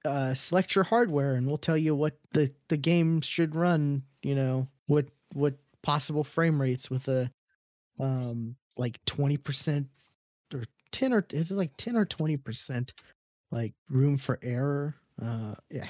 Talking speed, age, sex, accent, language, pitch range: 155 wpm, 20-39, male, American, English, 125-150 Hz